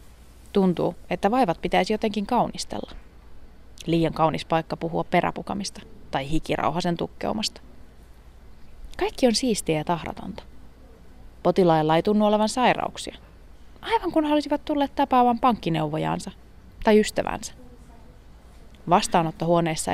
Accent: native